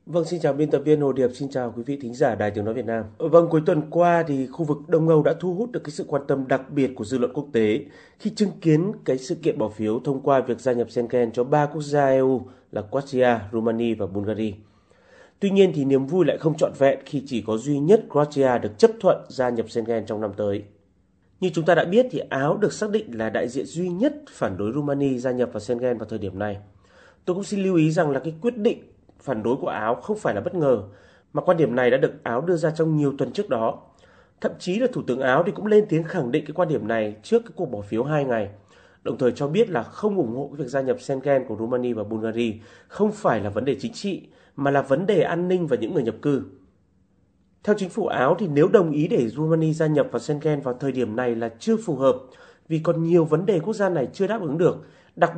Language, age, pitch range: Vietnamese, 30-49, 115-170 Hz